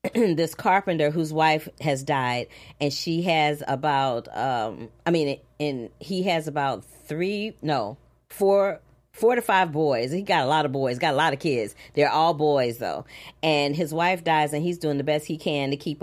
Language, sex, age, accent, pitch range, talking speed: English, female, 40-59, American, 135-170 Hz, 190 wpm